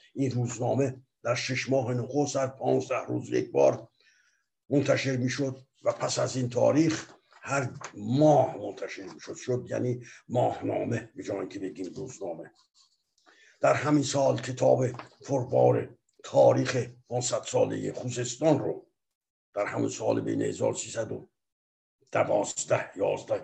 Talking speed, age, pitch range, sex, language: 120 wpm, 60-79, 120-140 Hz, male, Persian